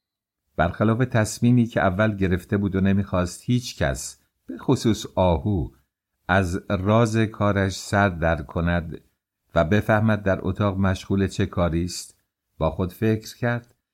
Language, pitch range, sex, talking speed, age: English, 90-110 Hz, male, 135 wpm, 50-69